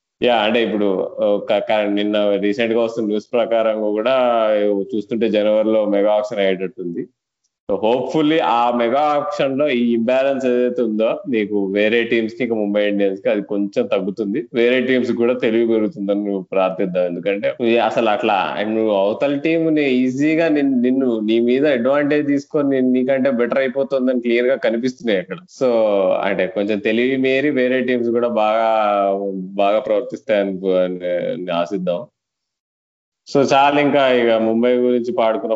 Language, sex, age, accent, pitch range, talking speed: Telugu, male, 20-39, native, 100-125 Hz, 135 wpm